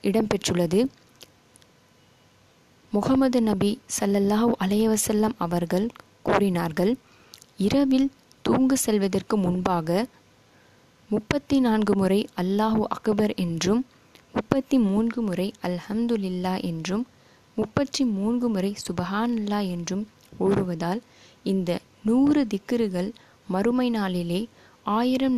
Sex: female